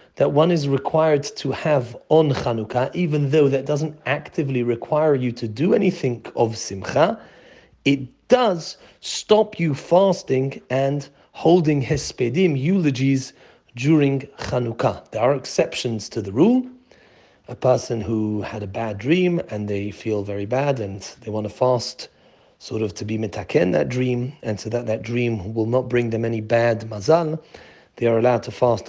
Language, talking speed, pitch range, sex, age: English, 160 wpm, 120-155 Hz, male, 40-59